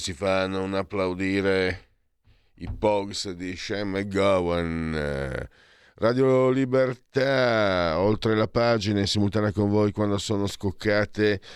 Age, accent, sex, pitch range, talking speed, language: 50-69, native, male, 90-115 Hz, 110 wpm, Italian